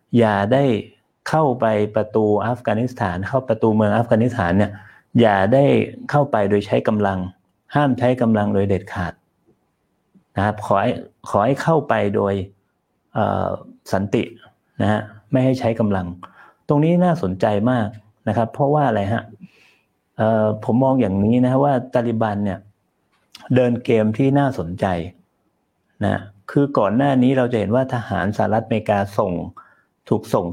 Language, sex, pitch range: Thai, male, 105-125 Hz